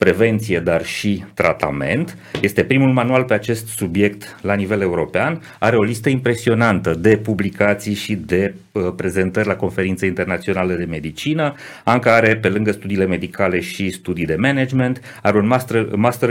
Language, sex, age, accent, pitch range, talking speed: Romanian, male, 30-49, native, 90-125 Hz, 145 wpm